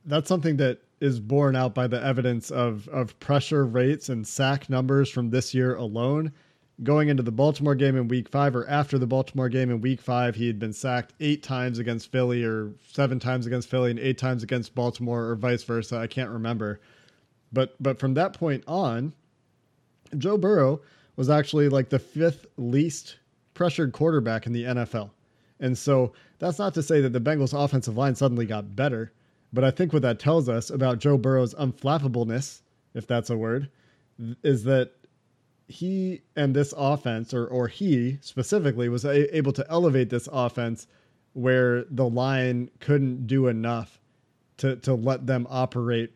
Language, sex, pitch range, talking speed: English, male, 120-140 Hz, 175 wpm